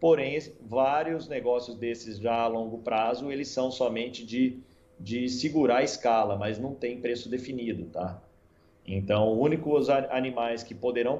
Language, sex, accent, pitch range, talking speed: Portuguese, male, Brazilian, 110-135 Hz, 160 wpm